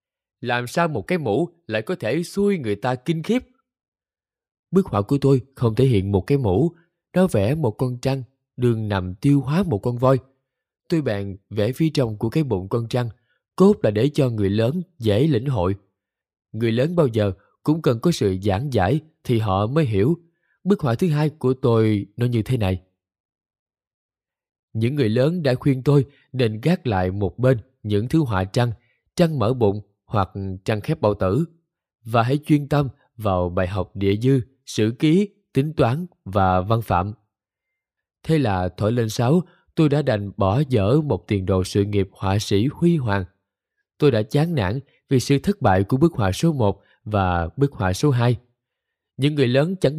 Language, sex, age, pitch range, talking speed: Vietnamese, male, 20-39, 105-150 Hz, 190 wpm